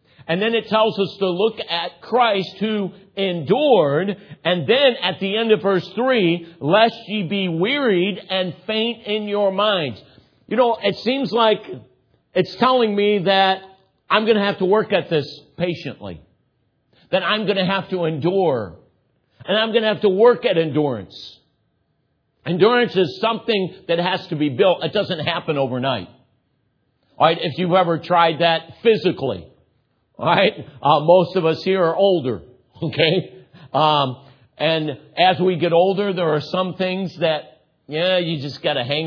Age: 60-79